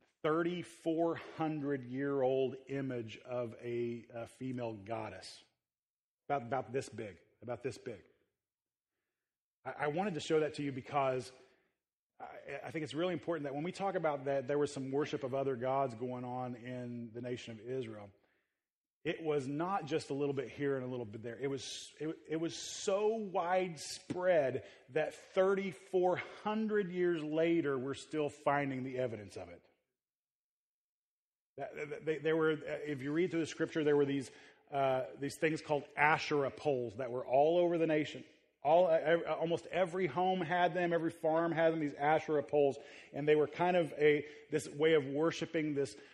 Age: 30-49